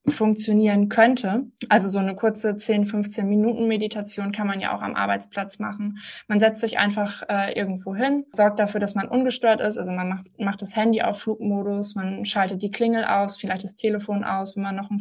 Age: 20-39